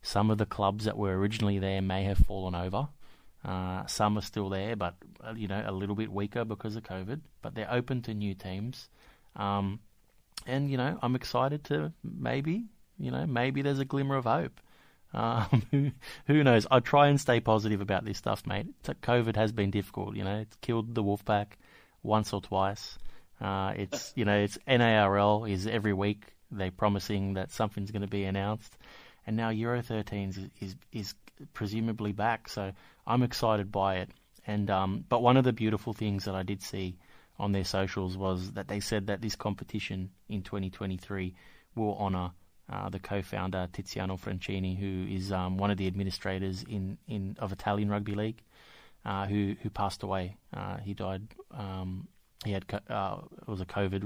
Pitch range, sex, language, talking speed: 95-110 Hz, male, English, 185 wpm